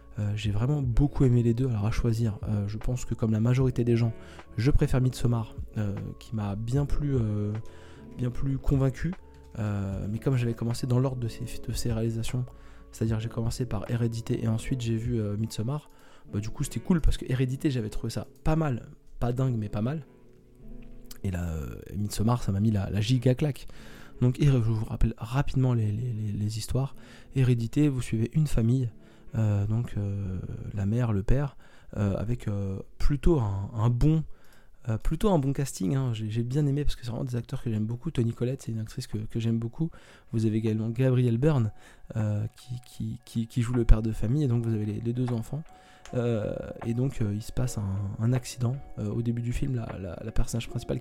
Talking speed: 215 wpm